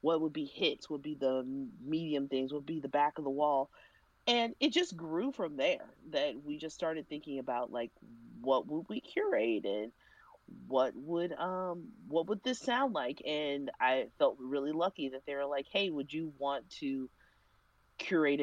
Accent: American